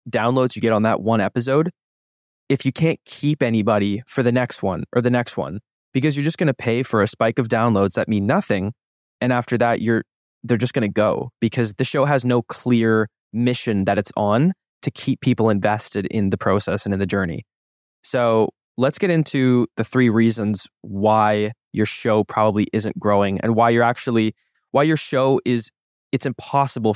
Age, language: 20-39, English